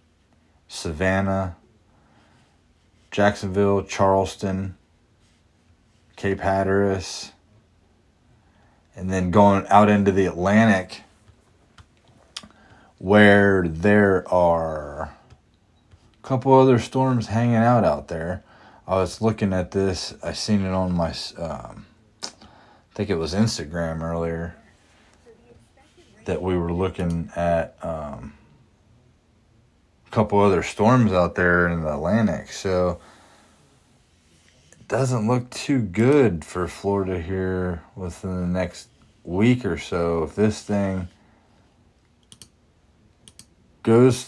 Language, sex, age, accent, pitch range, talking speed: English, male, 30-49, American, 85-105 Hz, 100 wpm